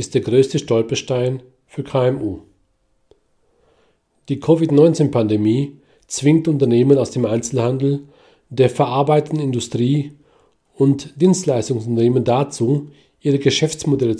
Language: German